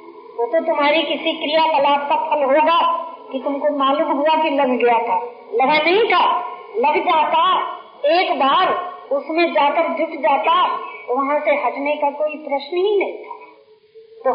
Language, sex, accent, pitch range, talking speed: Hindi, female, native, 300-435 Hz, 155 wpm